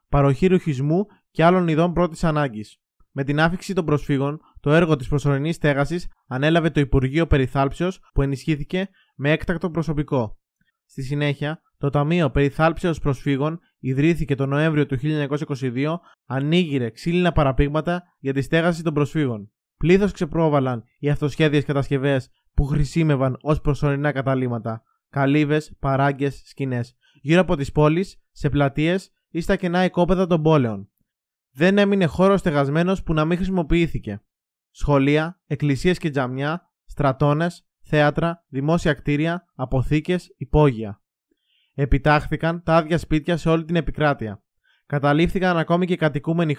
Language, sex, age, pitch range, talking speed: Greek, male, 20-39, 140-170 Hz, 130 wpm